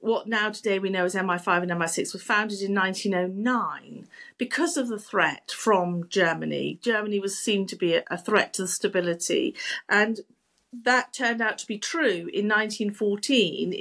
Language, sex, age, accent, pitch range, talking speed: English, female, 50-69, British, 190-260 Hz, 165 wpm